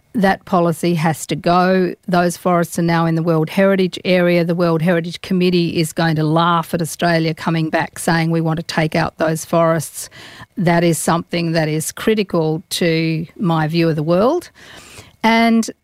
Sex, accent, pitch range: female, Australian, 170-210 Hz